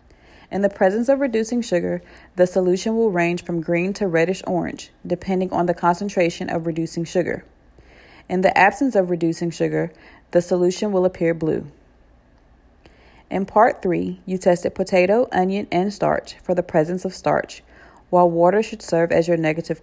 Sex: female